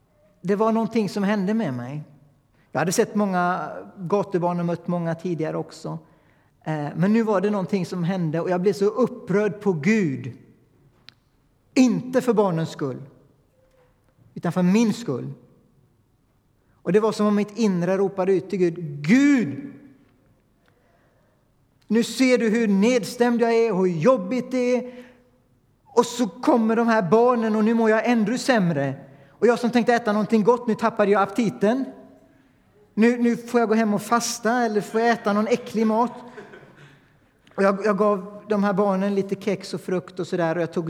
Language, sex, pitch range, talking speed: Swedish, male, 150-225 Hz, 170 wpm